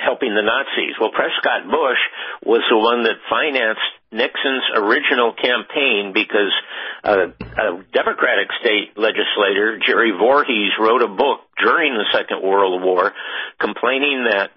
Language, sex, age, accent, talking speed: English, male, 60-79, American, 130 wpm